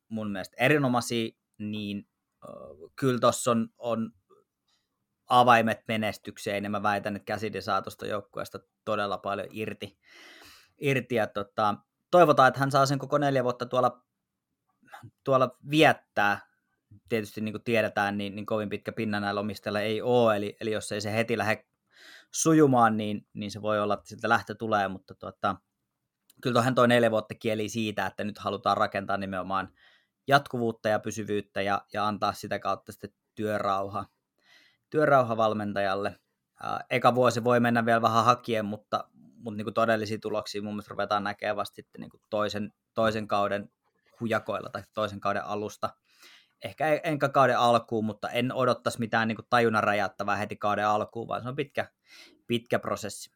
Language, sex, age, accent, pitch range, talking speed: Finnish, male, 30-49, native, 105-120 Hz, 145 wpm